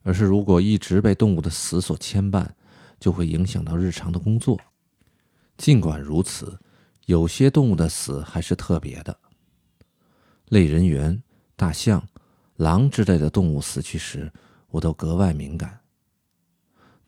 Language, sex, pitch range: Chinese, male, 80-105 Hz